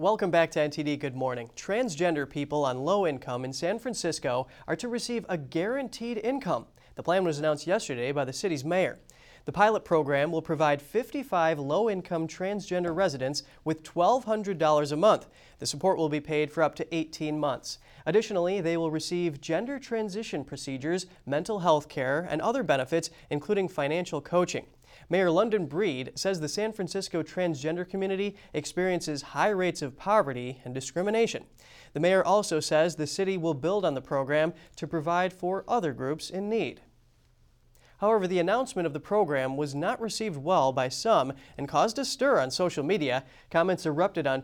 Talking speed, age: 170 wpm, 30-49